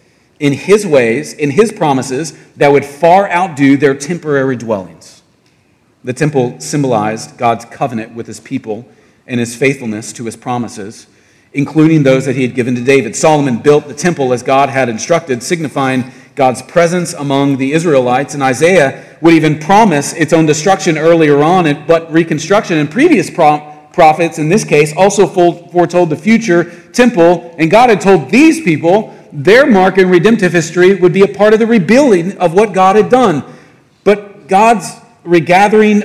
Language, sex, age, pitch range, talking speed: English, male, 40-59, 130-175 Hz, 165 wpm